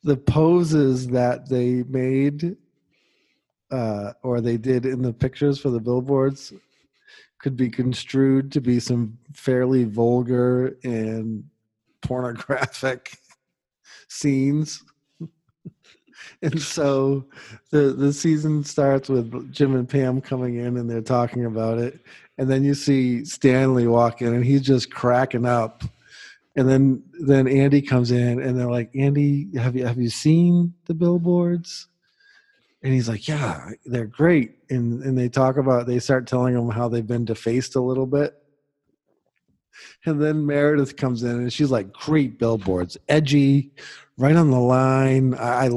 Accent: American